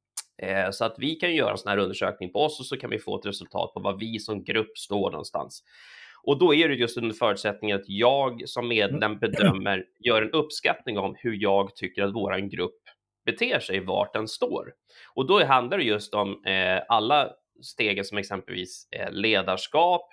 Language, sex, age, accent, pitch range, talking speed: Swedish, male, 30-49, native, 100-150 Hz, 190 wpm